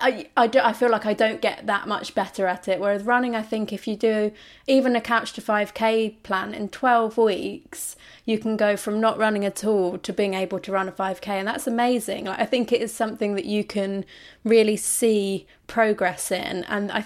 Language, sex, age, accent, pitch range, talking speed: English, female, 20-39, British, 195-230 Hz, 220 wpm